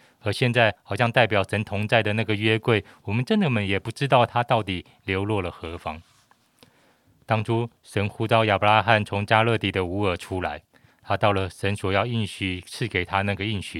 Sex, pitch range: male, 100-125 Hz